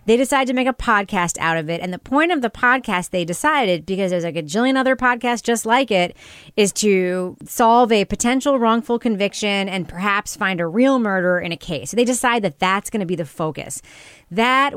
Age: 30-49